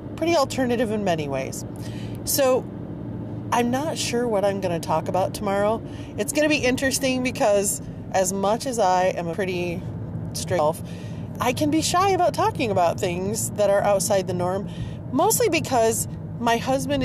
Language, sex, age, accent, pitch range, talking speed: English, female, 30-49, American, 160-210 Hz, 165 wpm